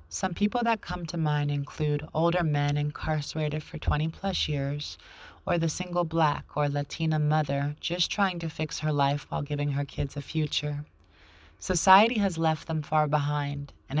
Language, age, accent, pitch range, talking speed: English, 30-49, American, 145-165 Hz, 165 wpm